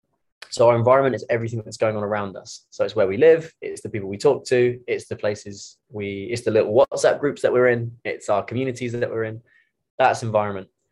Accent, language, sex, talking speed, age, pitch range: British, English, male, 225 wpm, 20-39, 105-125 Hz